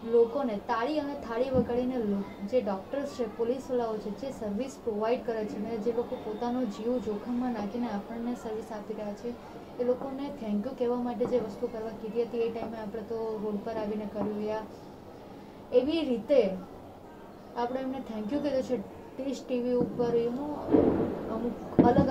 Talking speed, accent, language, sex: 155 wpm, native, Gujarati, female